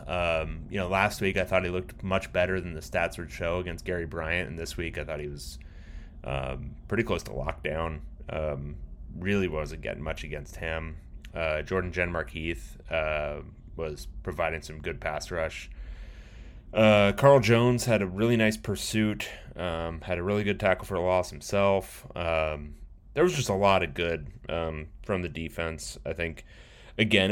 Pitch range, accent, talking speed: 80-95 Hz, American, 180 wpm